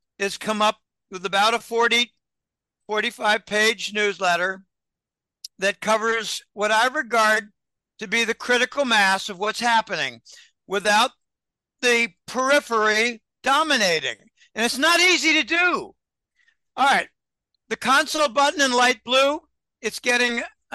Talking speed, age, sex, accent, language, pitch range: 120 wpm, 60-79, male, American, English, 210-260 Hz